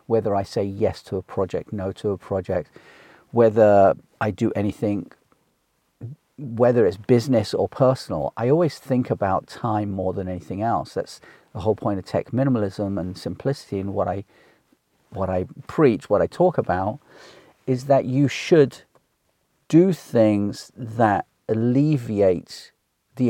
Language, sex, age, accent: English, male, 40-59, British